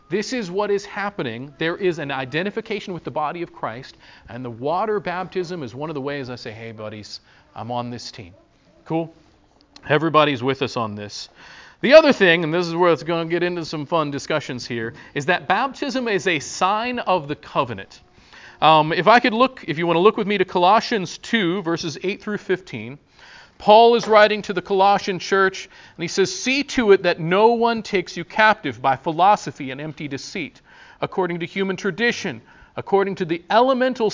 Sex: male